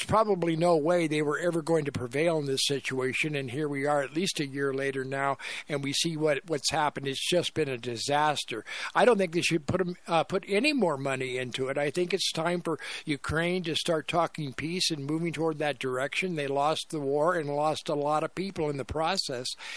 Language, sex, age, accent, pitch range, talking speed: English, male, 60-79, American, 145-180 Hz, 220 wpm